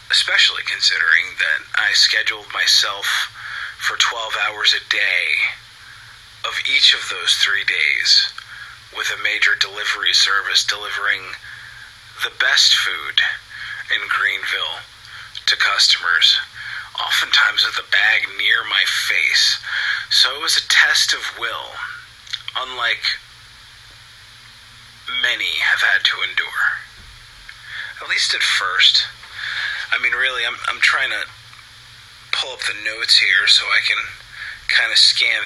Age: 30-49